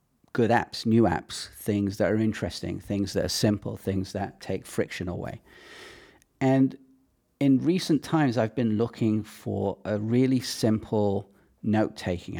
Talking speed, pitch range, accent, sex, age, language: 140 wpm, 105-125 Hz, British, male, 40-59, English